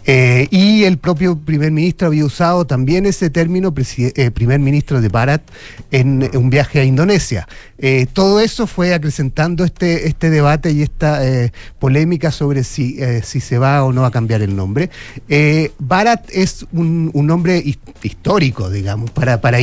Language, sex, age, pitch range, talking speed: Spanish, male, 40-59, 125-155 Hz, 175 wpm